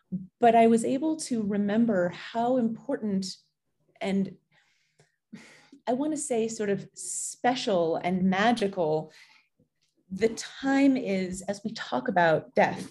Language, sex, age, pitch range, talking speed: English, female, 30-49, 180-235 Hz, 120 wpm